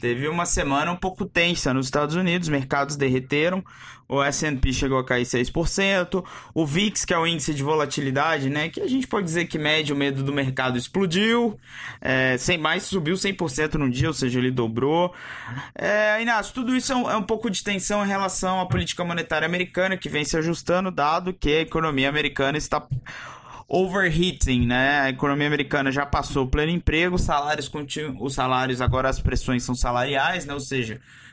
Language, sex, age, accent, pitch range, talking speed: Portuguese, male, 20-39, Brazilian, 130-180 Hz, 195 wpm